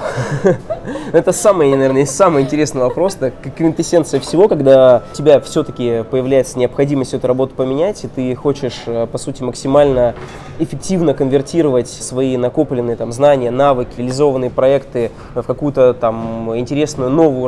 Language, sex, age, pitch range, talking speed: Russian, male, 20-39, 125-145 Hz, 130 wpm